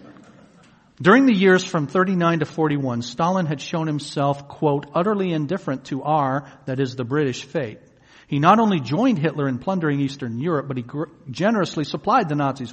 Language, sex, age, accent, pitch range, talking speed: English, male, 50-69, American, 145-185 Hz, 170 wpm